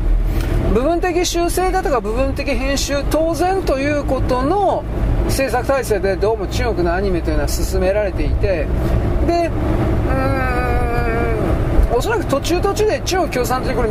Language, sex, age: Japanese, male, 40-59